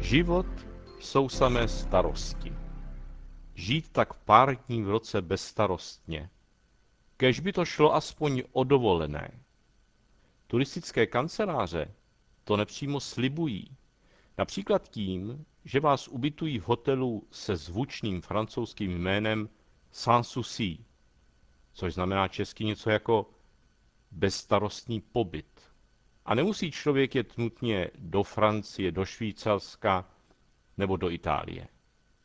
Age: 50-69